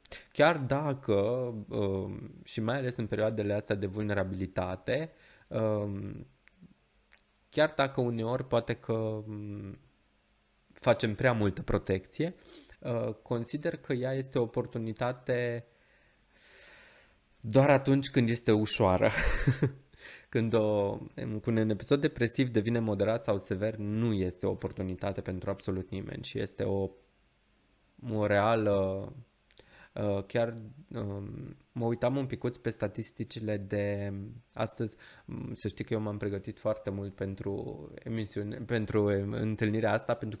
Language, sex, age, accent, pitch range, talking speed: Romanian, male, 20-39, native, 100-125 Hz, 110 wpm